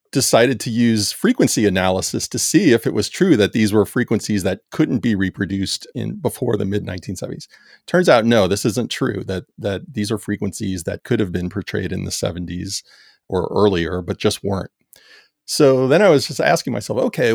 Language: English